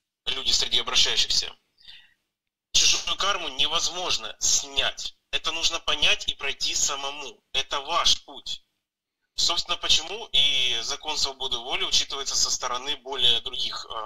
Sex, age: male, 30-49